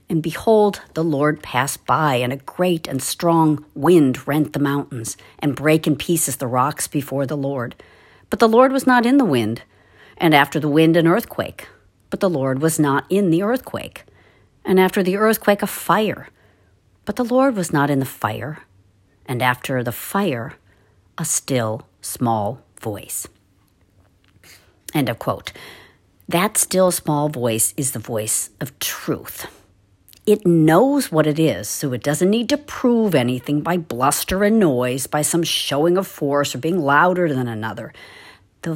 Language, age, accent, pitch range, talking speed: English, 50-69, American, 120-180 Hz, 165 wpm